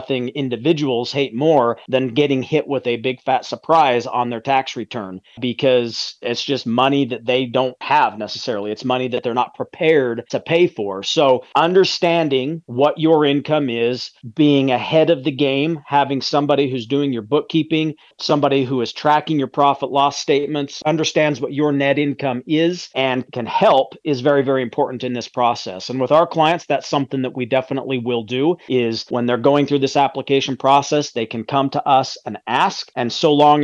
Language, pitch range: English, 125-150 Hz